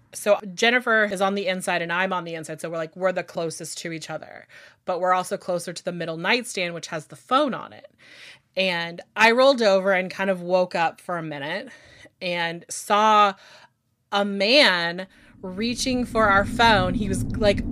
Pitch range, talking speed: 185-245 Hz, 195 wpm